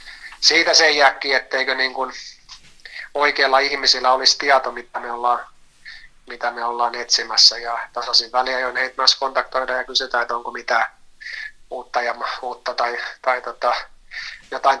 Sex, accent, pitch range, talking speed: male, native, 125-145 Hz, 145 wpm